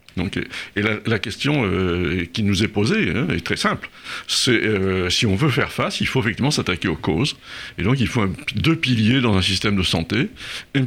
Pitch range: 100-130 Hz